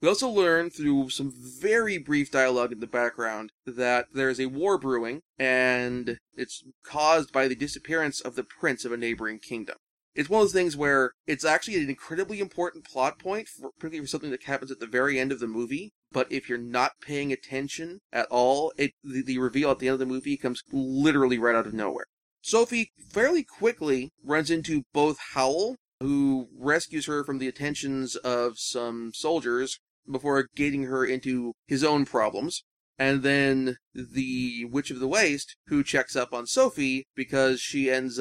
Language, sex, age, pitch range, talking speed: English, male, 30-49, 125-145 Hz, 180 wpm